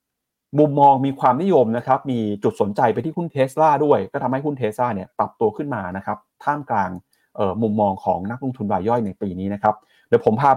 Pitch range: 105-140 Hz